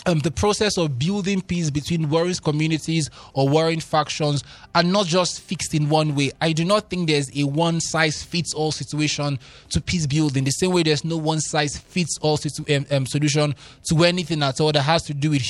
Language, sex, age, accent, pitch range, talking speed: English, male, 20-39, Nigerian, 150-190 Hz, 190 wpm